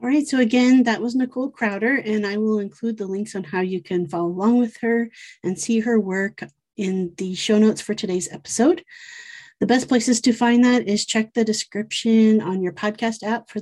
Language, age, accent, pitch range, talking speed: English, 30-49, American, 190-230 Hz, 210 wpm